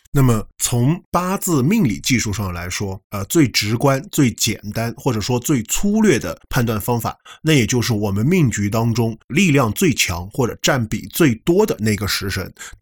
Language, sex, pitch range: Chinese, male, 105-140 Hz